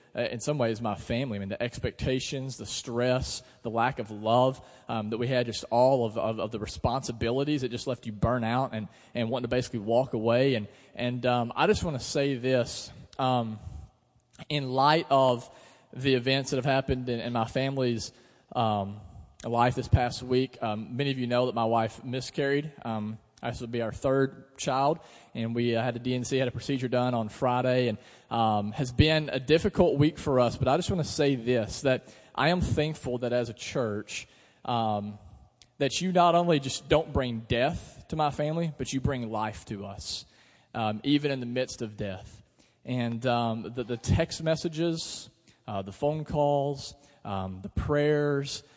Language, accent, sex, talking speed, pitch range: English, American, male, 190 wpm, 115-135 Hz